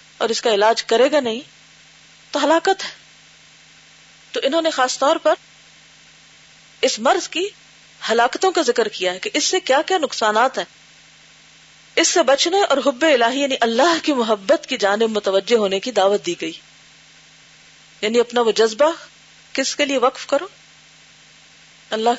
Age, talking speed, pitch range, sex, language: 40-59, 160 wpm, 175-280 Hz, female, Urdu